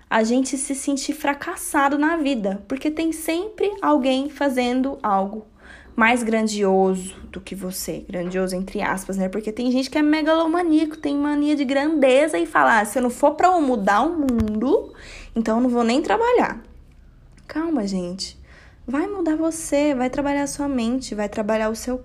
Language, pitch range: Portuguese, 215-285 Hz